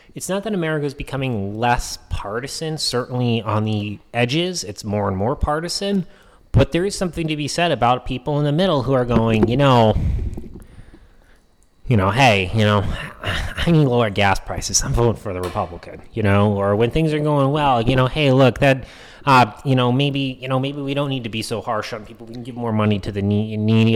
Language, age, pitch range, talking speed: English, 30-49, 105-145 Hz, 215 wpm